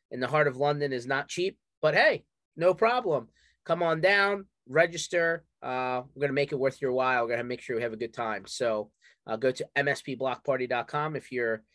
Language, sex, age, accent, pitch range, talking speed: English, male, 30-49, American, 125-155 Hz, 205 wpm